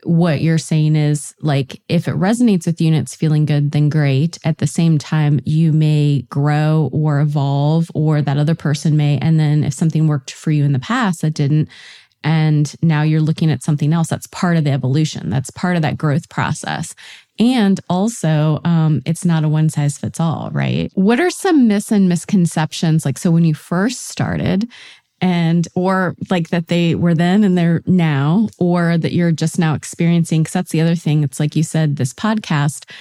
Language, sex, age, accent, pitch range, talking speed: English, female, 20-39, American, 150-180 Hz, 195 wpm